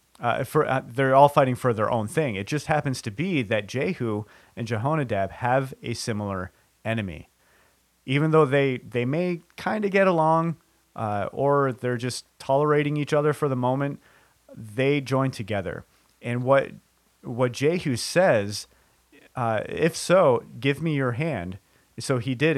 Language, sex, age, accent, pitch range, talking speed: English, male, 30-49, American, 110-140 Hz, 160 wpm